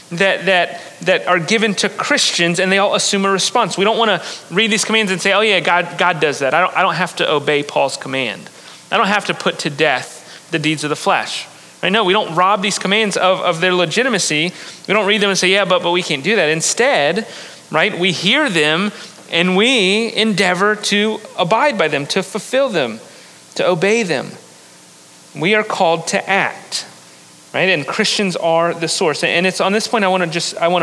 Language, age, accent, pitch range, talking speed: English, 30-49, American, 170-210 Hz, 210 wpm